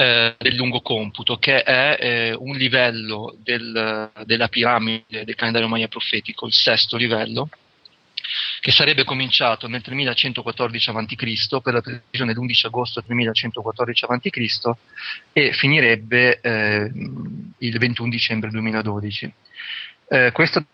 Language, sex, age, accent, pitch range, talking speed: Italian, male, 30-49, native, 115-130 Hz, 115 wpm